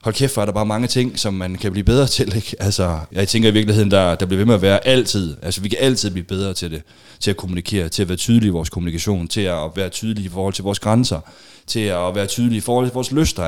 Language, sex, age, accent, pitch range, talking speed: Danish, male, 30-49, native, 95-115 Hz, 285 wpm